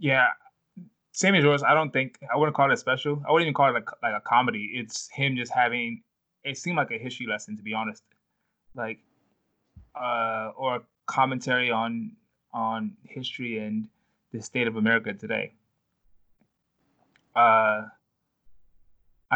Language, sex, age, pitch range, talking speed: English, male, 20-39, 115-135 Hz, 150 wpm